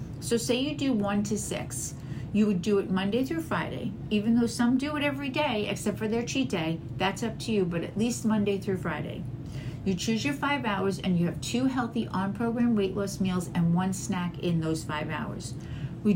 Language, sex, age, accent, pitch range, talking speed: English, female, 40-59, American, 165-220 Hz, 215 wpm